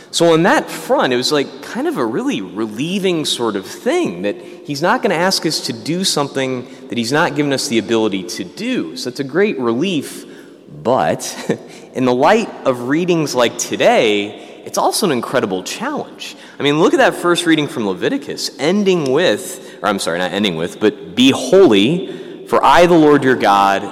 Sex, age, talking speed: male, 30-49, 195 wpm